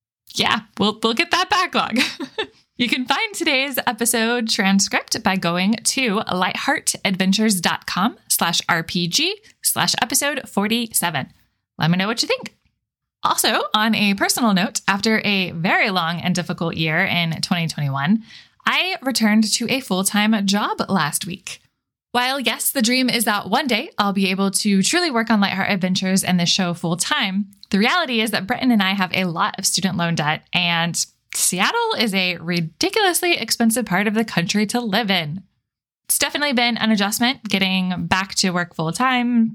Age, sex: 20-39, female